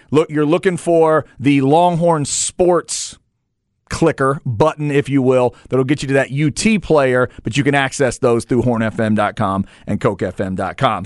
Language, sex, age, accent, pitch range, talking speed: English, male, 40-59, American, 120-165 Hz, 150 wpm